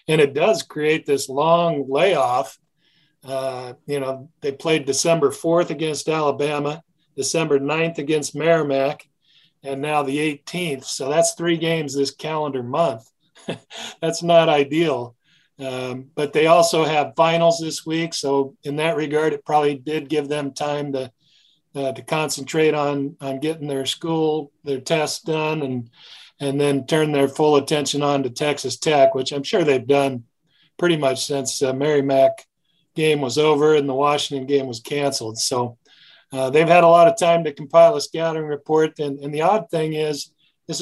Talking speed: 170 wpm